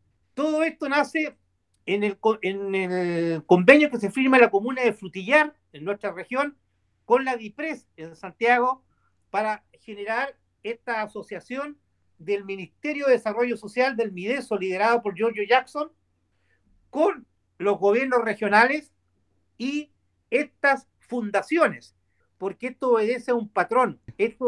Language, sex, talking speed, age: Spanish, male, 130 wpm, 50-69